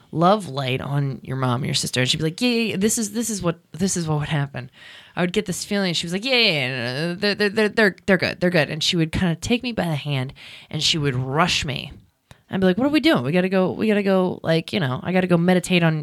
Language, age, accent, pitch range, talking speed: English, 20-39, American, 130-180 Hz, 295 wpm